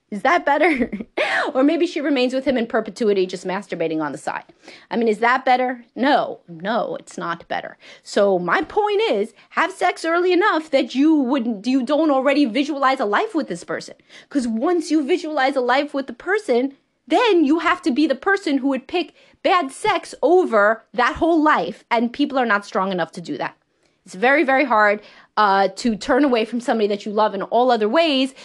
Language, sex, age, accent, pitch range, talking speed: English, female, 30-49, American, 225-295 Hz, 205 wpm